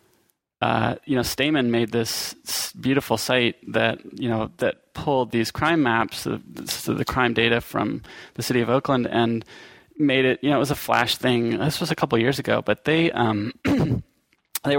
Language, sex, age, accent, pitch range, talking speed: English, male, 20-39, American, 115-140 Hz, 185 wpm